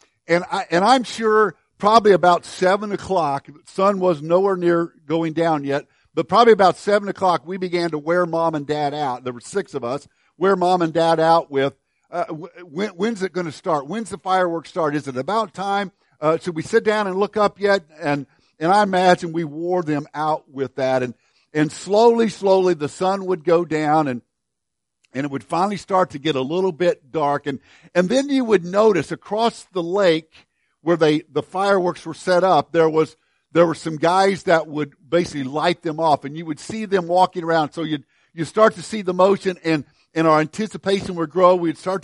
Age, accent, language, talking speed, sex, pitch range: 50-69, American, English, 210 wpm, male, 150-190 Hz